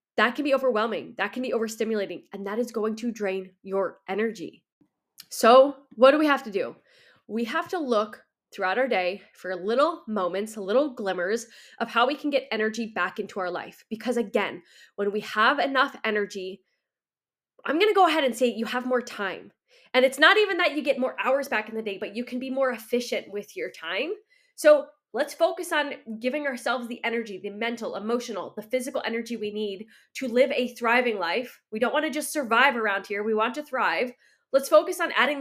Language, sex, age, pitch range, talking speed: English, female, 20-39, 215-280 Hz, 205 wpm